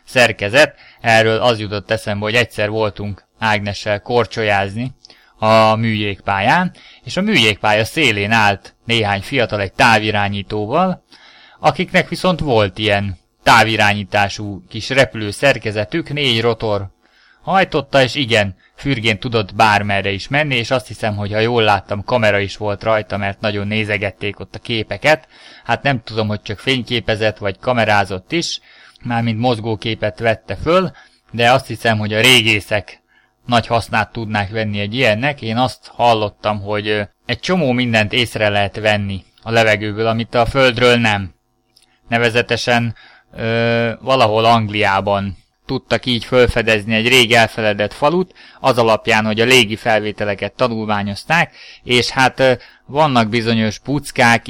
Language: Hungarian